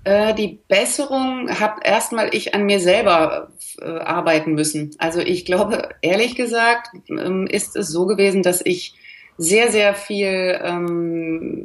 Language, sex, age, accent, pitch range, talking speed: German, female, 30-49, German, 165-210 Hz, 140 wpm